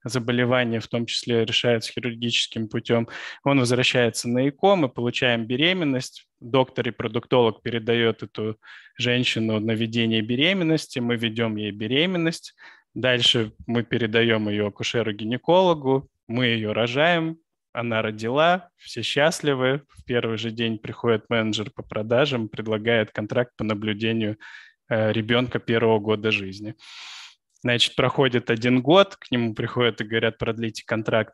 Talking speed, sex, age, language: 120 wpm, male, 20-39, Turkish